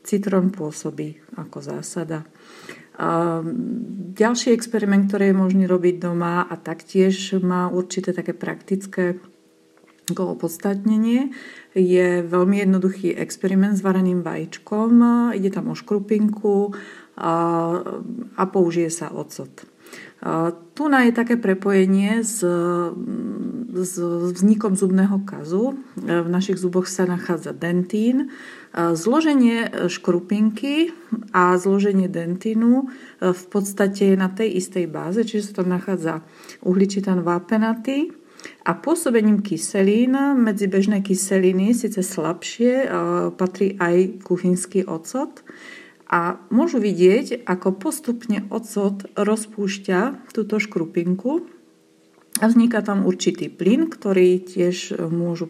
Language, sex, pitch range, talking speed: Slovak, female, 180-225 Hz, 100 wpm